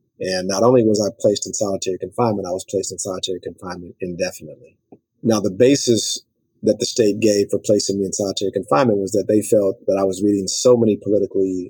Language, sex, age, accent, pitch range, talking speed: English, male, 40-59, American, 95-115 Hz, 205 wpm